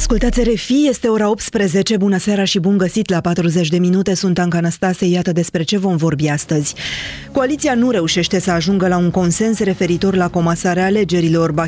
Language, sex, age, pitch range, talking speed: Romanian, female, 20-39, 155-195 Hz, 185 wpm